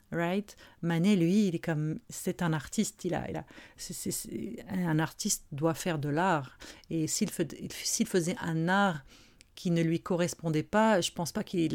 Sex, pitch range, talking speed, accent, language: female, 160-195 Hz, 200 wpm, French, French